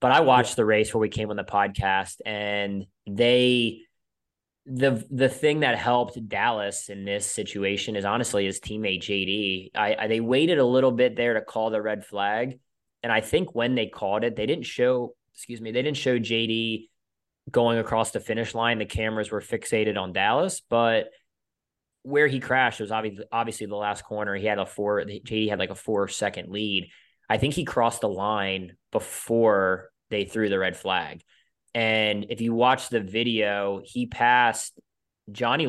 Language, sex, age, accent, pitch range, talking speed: English, male, 20-39, American, 100-115 Hz, 185 wpm